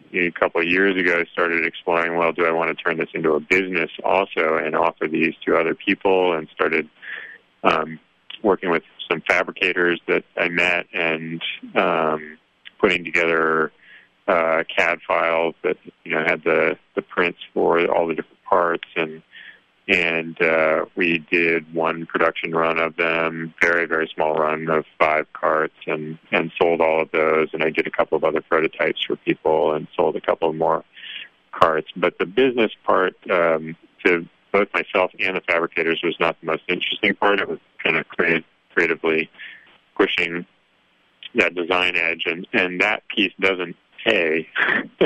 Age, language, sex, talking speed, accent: 30-49, English, male, 170 wpm, American